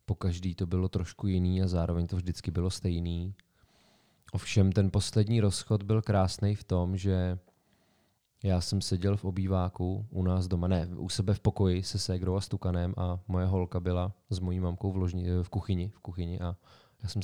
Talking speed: 190 wpm